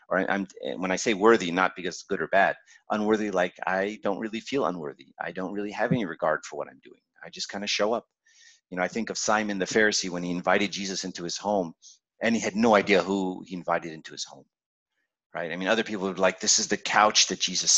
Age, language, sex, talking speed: 40-59, English, male, 245 wpm